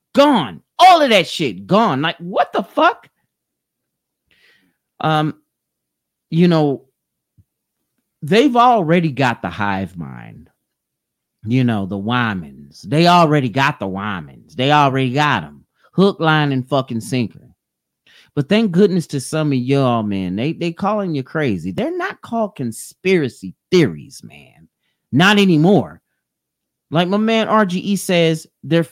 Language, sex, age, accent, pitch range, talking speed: English, male, 40-59, American, 130-205 Hz, 135 wpm